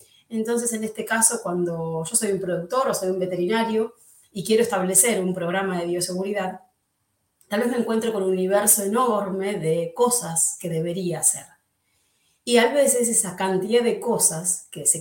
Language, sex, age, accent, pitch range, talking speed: Spanish, female, 30-49, Argentinian, 175-220 Hz, 170 wpm